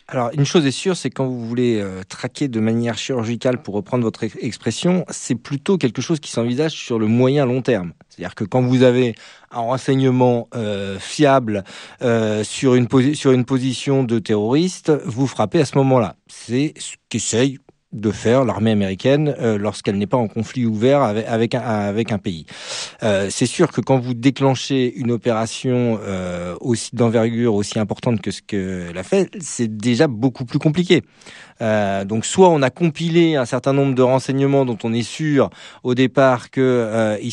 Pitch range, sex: 105-135 Hz, male